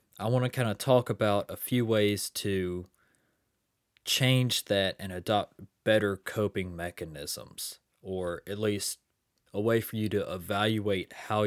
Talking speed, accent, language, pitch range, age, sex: 145 wpm, American, English, 95-115 Hz, 20-39, male